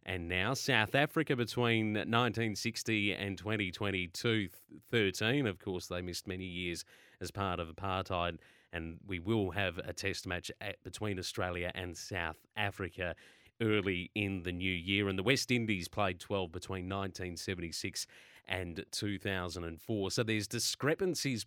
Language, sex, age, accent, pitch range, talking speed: English, male, 30-49, Australian, 95-120 Hz, 135 wpm